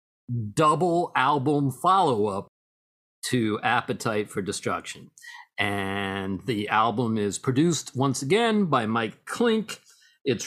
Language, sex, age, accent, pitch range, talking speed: English, male, 50-69, American, 125-165 Hz, 105 wpm